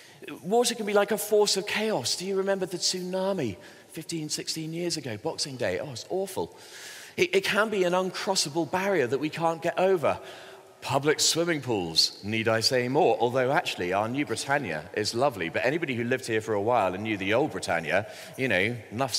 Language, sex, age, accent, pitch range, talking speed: English, male, 30-49, British, 140-200 Hz, 200 wpm